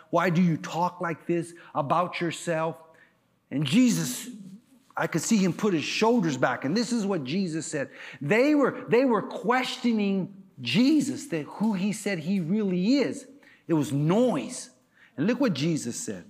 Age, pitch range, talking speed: 40-59, 175-260 Hz, 165 wpm